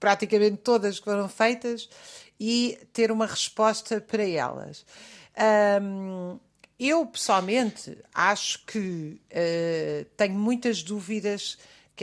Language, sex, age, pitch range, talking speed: Portuguese, female, 50-69, 175-220 Hz, 105 wpm